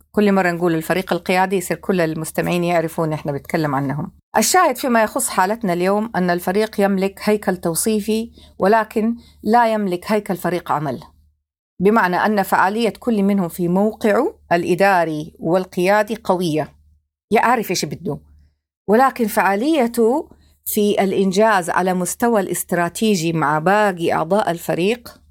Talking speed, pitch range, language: 125 wpm, 170-225 Hz, Arabic